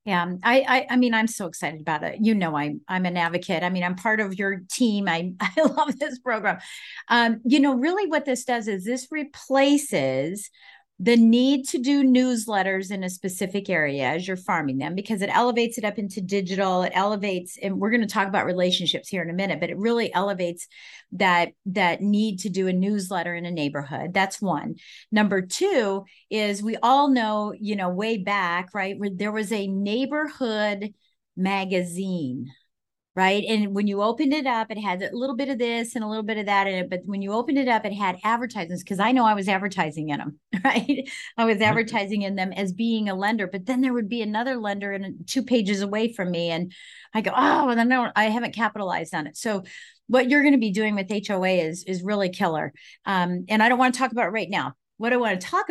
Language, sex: English, female